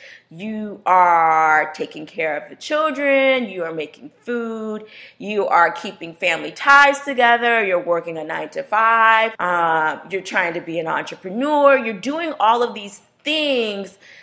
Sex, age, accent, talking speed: female, 30-49, American, 140 wpm